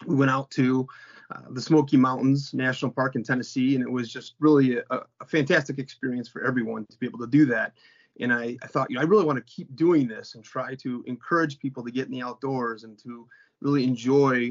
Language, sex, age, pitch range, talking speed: English, male, 30-49, 120-140 Hz, 230 wpm